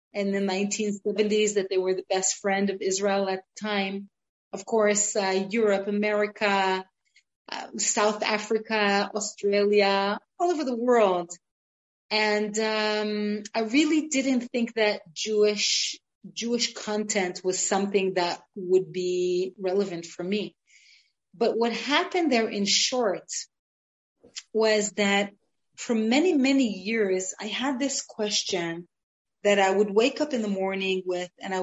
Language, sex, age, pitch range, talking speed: English, female, 30-49, 195-220 Hz, 135 wpm